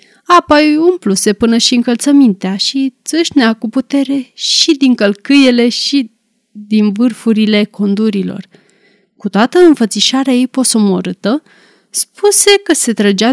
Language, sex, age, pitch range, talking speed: Romanian, female, 30-49, 200-265 Hz, 115 wpm